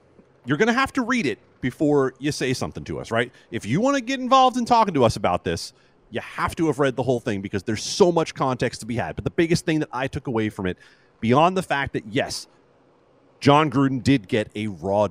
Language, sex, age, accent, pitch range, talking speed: English, male, 30-49, American, 115-165 Hz, 245 wpm